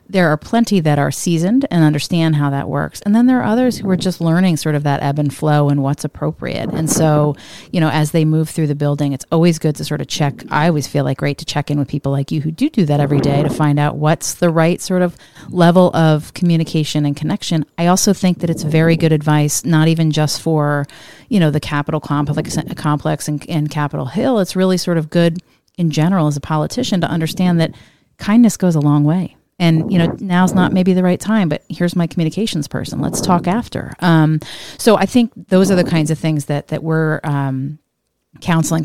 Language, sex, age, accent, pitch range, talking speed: English, female, 30-49, American, 145-175 Hz, 230 wpm